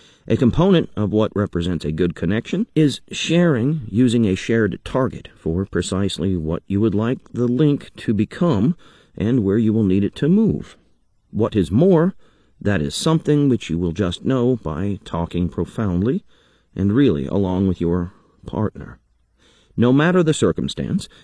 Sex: male